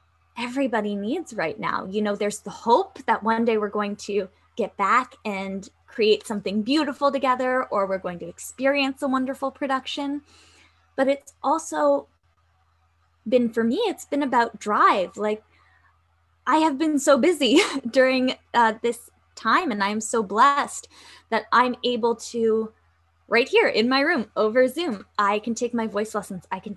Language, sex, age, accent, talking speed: English, female, 10-29, American, 165 wpm